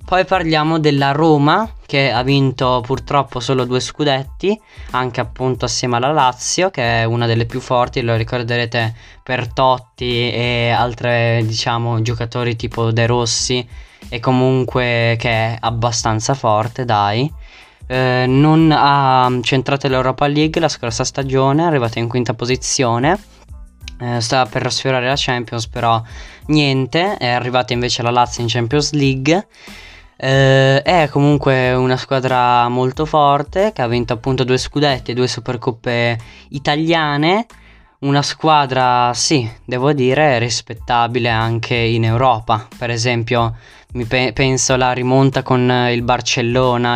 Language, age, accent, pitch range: Italian, 20-39, native, 120-135 Hz